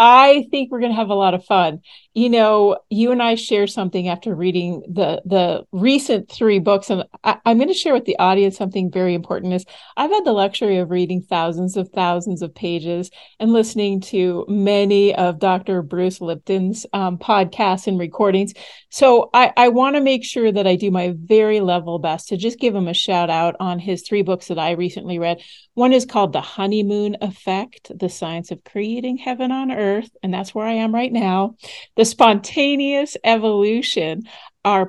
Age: 40-59